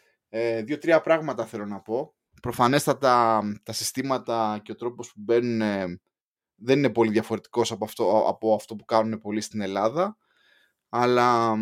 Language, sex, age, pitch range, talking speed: Greek, male, 20-39, 100-125 Hz, 155 wpm